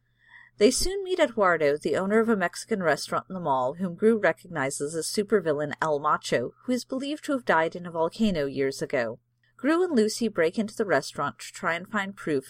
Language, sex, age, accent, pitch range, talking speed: English, female, 40-59, American, 140-220 Hz, 205 wpm